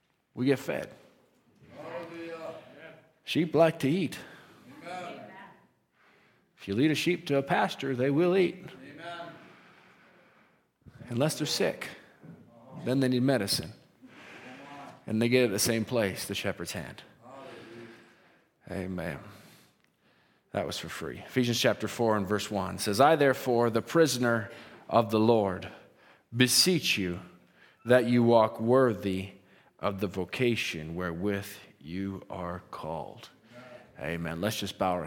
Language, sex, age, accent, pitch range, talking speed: English, male, 40-59, American, 100-130 Hz, 125 wpm